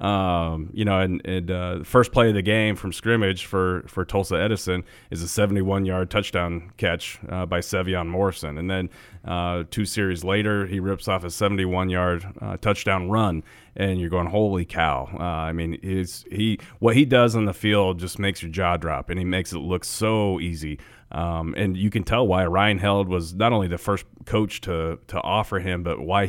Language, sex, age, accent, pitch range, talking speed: English, male, 30-49, American, 85-105 Hz, 200 wpm